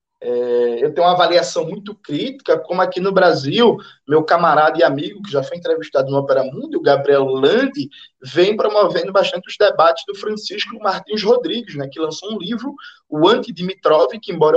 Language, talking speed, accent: Portuguese, 180 wpm, Brazilian